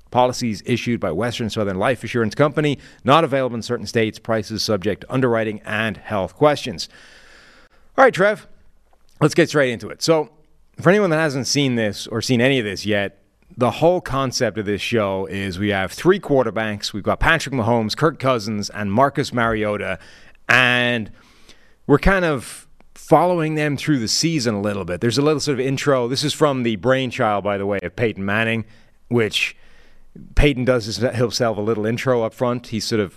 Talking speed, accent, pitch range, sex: 185 wpm, American, 105-135 Hz, male